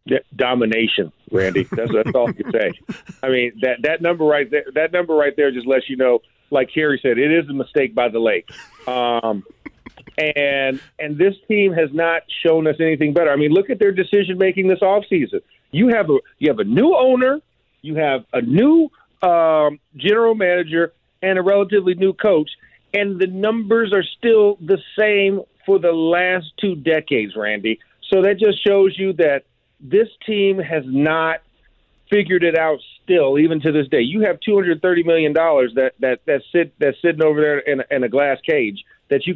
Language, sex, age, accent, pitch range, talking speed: English, male, 50-69, American, 150-200 Hz, 190 wpm